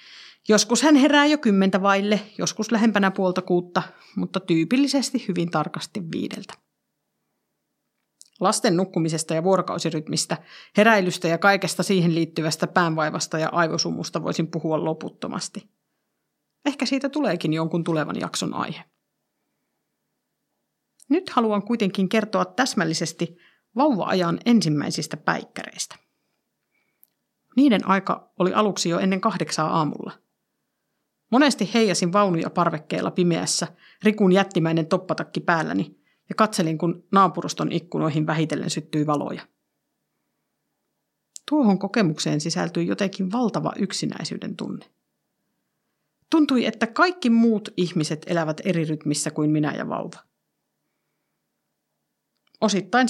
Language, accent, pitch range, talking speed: Finnish, native, 165-215 Hz, 100 wpm